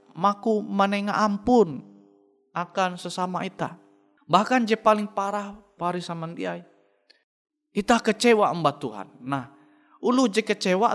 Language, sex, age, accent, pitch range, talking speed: Indonesian, male, 30-49, native, 140-210 Hz, 110 wpm